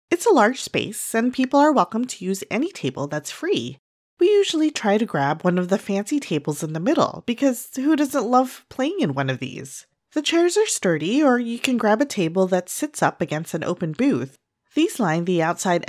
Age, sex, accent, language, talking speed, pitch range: 30-49, female, American, English, 215 wpm, 175-285 Hz